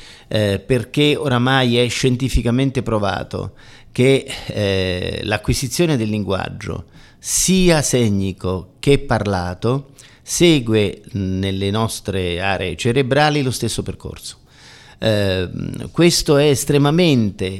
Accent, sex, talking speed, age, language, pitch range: native, male, 90 wpm, 50-69, Italian, 95-130 Hz